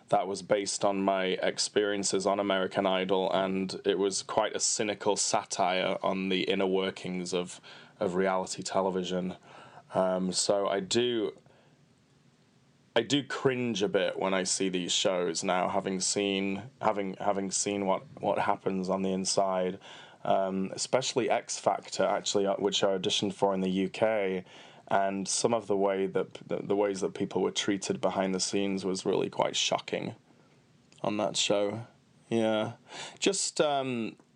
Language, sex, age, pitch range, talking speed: English, male, 20-39, 95-105 Hz, 150 wpm